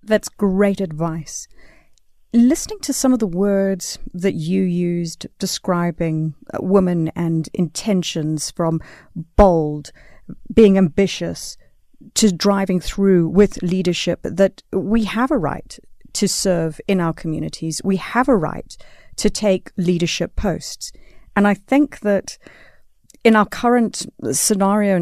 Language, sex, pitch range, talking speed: English, female, 165-205 Hz, 120 wpm